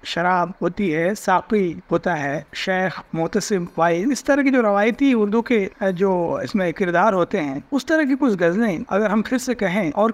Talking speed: 165 wpm